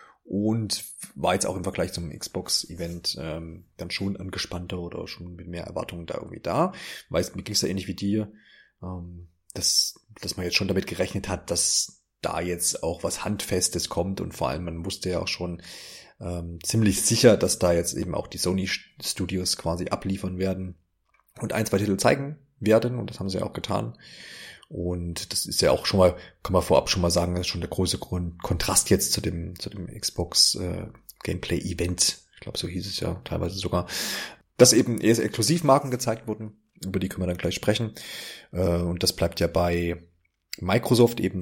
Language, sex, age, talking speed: German, male, 30-49, 195 wpm